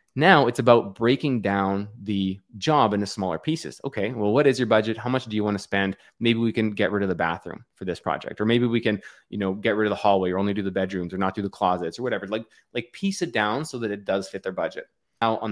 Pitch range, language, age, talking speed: 100-120 Hz, English, 20-39, 275 wpm